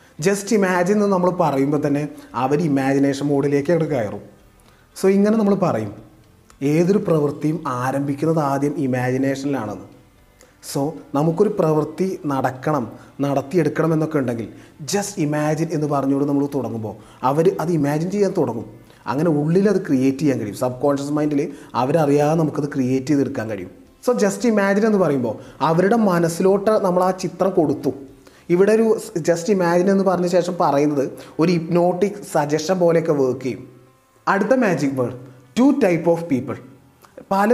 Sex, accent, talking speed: male, native, 135 wpm